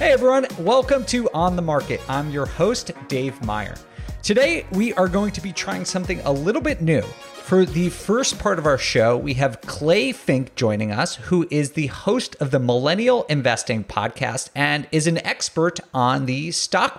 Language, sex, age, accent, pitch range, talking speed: English, male, 30-49, American, 130-185 Hz, 185 wpm